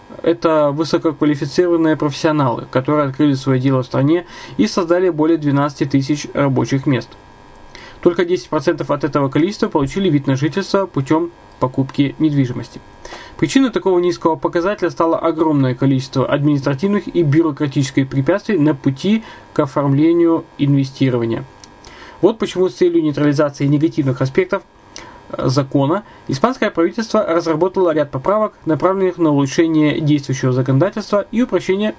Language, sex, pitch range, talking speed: Russian, male, 135-175 Hz, 120 wpm